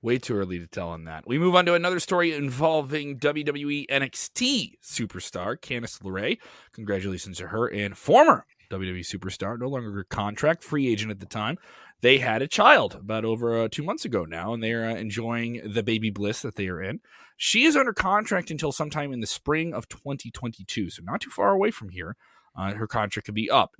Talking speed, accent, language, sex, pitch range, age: 205 wpm, American, English, male, 110-150 Hz, 30-49